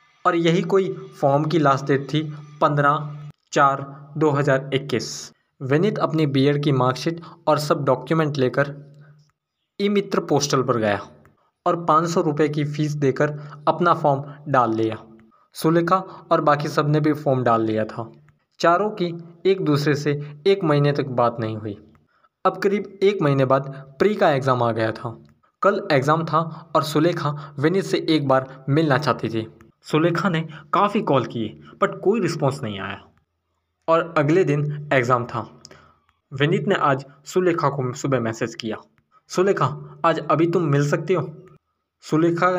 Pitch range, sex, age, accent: 130-165 Hz, male, 20-39, native